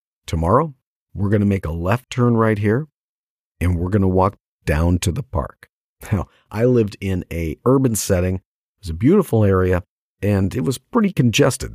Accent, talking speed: American, 185 wpm